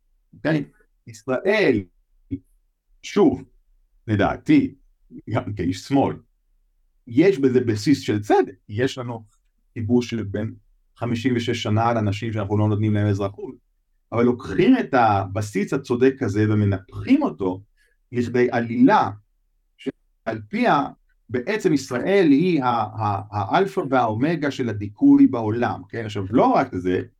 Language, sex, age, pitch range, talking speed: Hebrew, male, 50-69, 100-135 Hz, 115 wpm